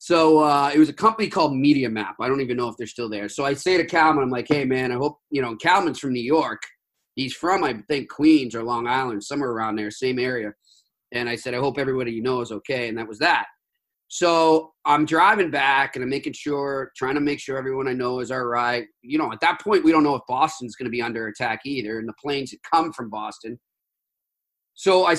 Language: English